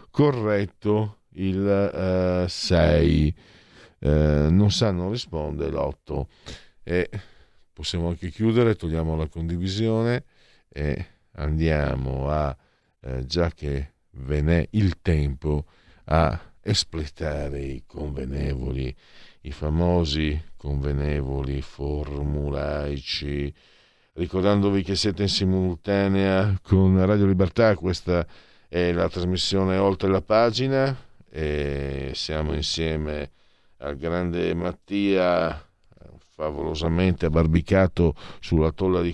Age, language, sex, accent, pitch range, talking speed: 50-69, Italian, male, native, 75-100 Hz, 90 wpm